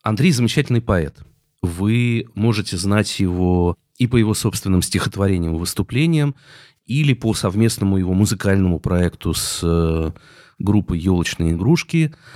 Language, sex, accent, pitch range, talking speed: Russian, male, native, 90-125 Hz, 115 wpm